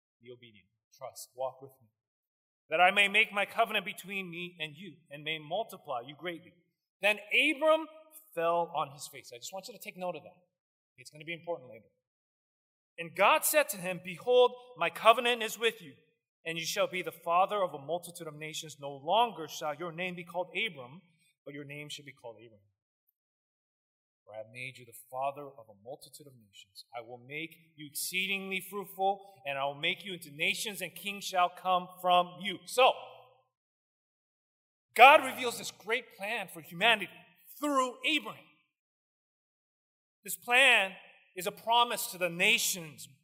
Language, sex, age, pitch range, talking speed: English, male, 30-49, 145-200 Hz, 175 wpm